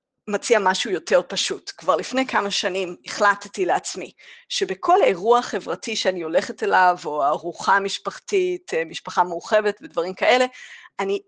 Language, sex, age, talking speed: Hebrew, female, 30-49, 130 wpm